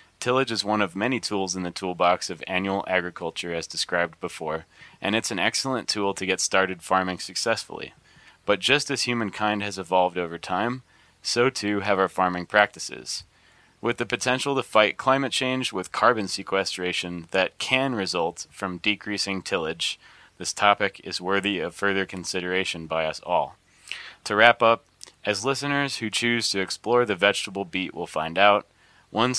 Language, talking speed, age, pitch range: English, 165 wpm, 20-39, 95-115 Hz